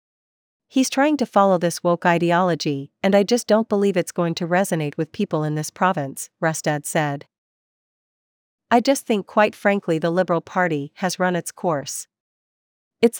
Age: 40-59